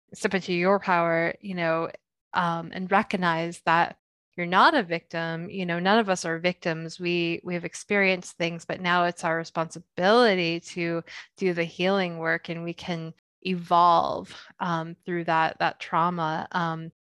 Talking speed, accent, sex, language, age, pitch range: 160 wpm, American, female, English, 20-39, 165-185 Hz